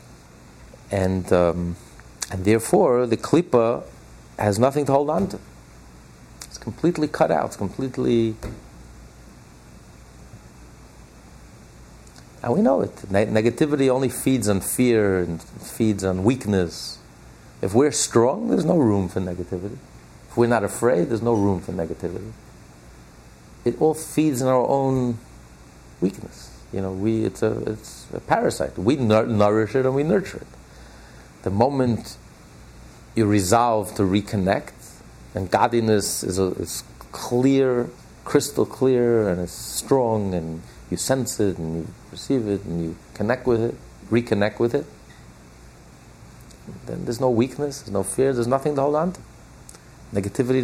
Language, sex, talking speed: English, male, 140 wpm